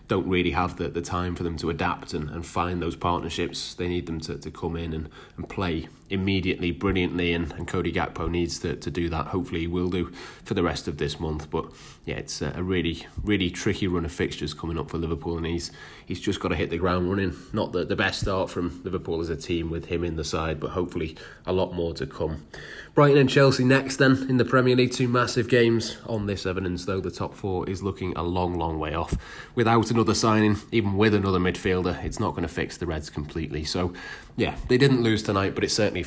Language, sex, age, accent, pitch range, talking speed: English, male, 20-39, British, 85-95 Hz, 240 wpm